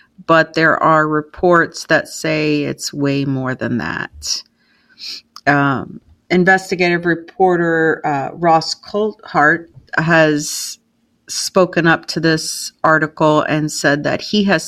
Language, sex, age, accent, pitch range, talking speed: English, female, 50-69, American, 150-175 Hz, 115 wpm